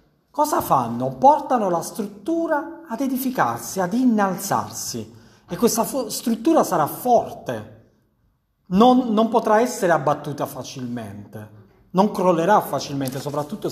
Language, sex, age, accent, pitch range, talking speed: Italian, male, 40-59, native, 170-255 Hz, 105 wpm